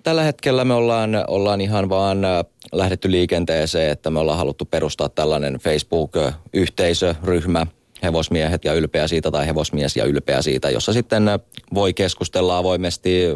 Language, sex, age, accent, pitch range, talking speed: Finnish, male, 30-49, native, 75-95 Hz, 135 wpm